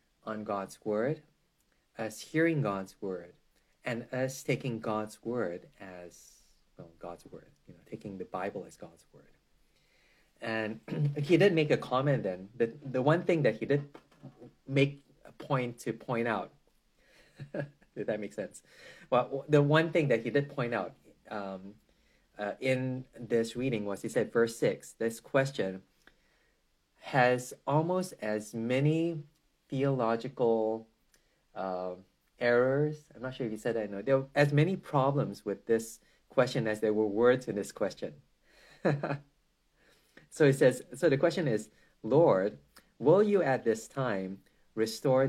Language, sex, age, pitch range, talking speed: English, male, 30-49, 110-140 Hz, 150 wpm